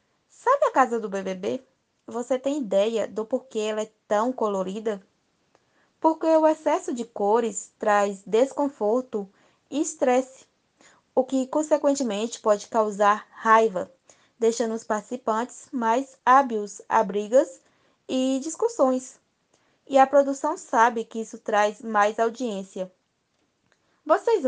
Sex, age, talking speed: female, 20-39, 120 wpm